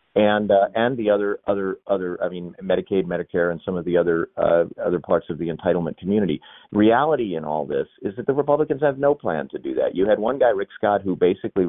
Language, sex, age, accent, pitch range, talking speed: English, male, 40-59, American, 90-115 Hz, 230 wpm